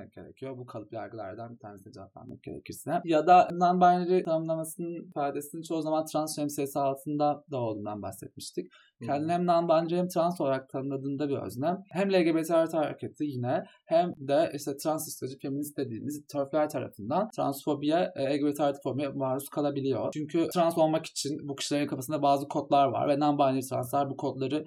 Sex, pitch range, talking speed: male, 135-160 Hz, 150 wpm